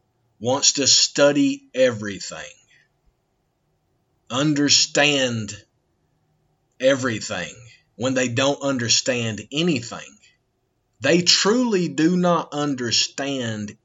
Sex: male